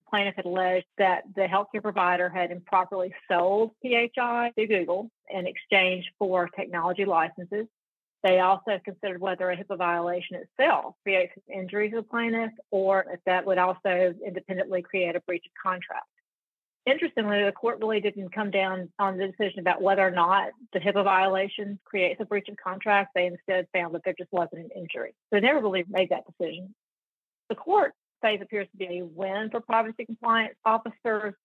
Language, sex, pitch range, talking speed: English, female, 180-205 Hz, 170 wpm